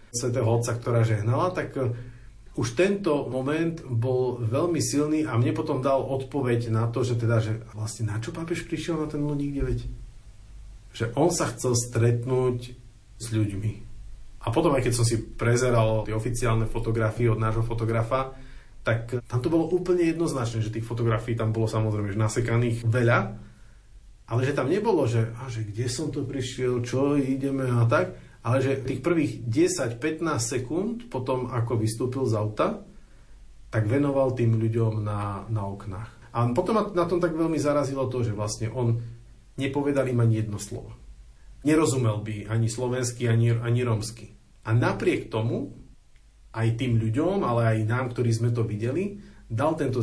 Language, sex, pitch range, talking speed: Slovak, male, 110-135 Hz, 160 wpm